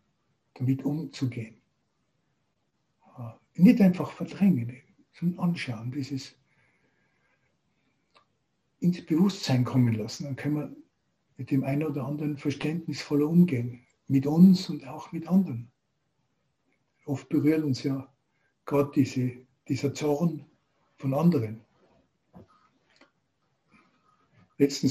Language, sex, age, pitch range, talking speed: German, male, 60-79, 125-150 Hz, 95 wpm